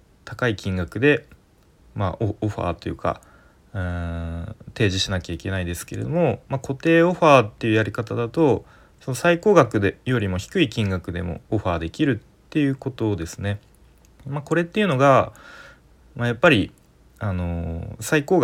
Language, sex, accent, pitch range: Japanese, male, native, 90-140 Hz